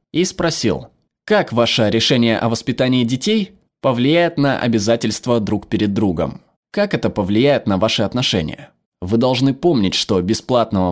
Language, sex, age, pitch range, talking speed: Russian, male, 20-39, 105-130 Hz, 135 wpm